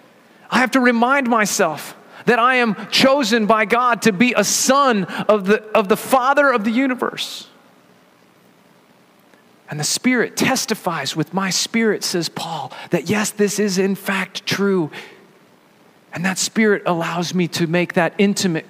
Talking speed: 155 wpm